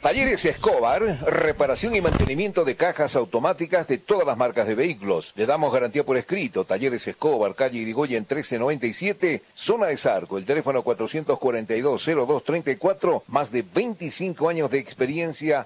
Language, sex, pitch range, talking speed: Spanish, male, 120-165 Hz, 140 wpm